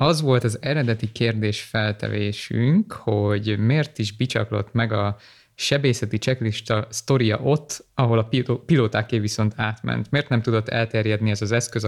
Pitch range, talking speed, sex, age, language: 110-135 Hz, 145 wpm, male, 20-39, Hungarian